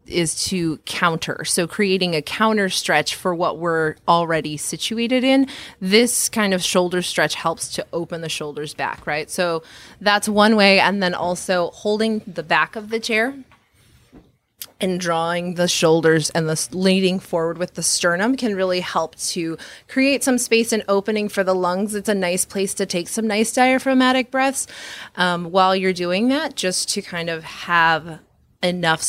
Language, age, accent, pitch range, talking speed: English, 20-39, American, 170-220 Hz, 170 wpm